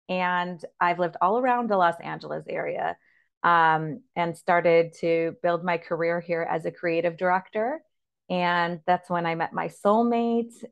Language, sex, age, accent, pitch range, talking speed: English, female, 30-49, American, 170-205 Hz, 155 wpm